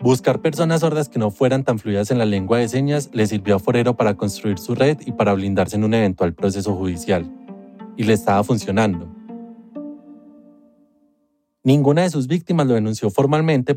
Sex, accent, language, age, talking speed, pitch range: male, Colombian, Spanish, 20-39, 175 wpm, 100-135 Hz